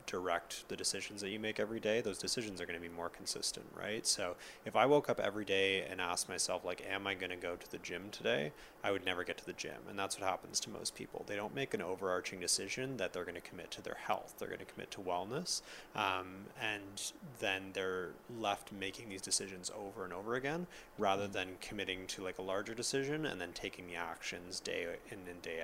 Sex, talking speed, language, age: male, 235 wpm, English, 20-39